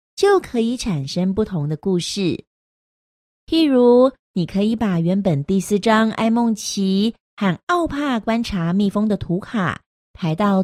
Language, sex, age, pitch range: Chinese, female, 40-59, 180-260 Hz